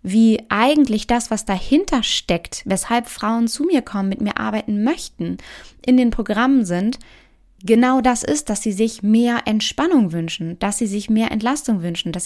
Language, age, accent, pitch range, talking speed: German, 20-39, German, 195-235 Hz, 170 wpm